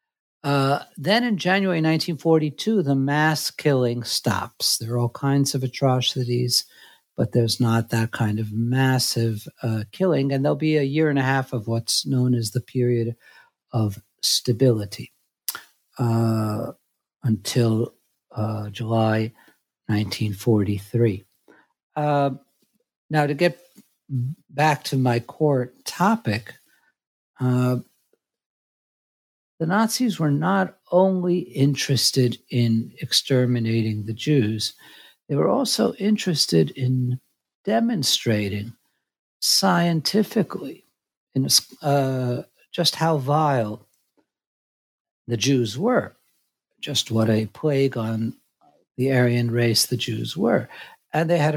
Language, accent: English, American